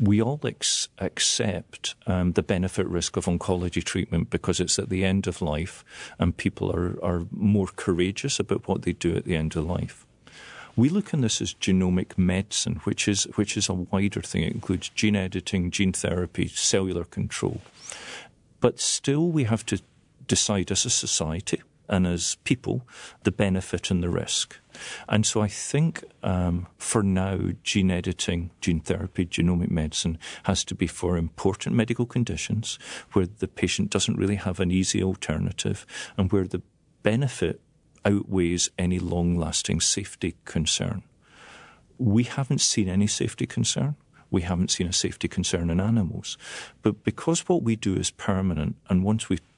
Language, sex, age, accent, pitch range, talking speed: English, male, 40-59, British, 90-105 Hz, 160 wpm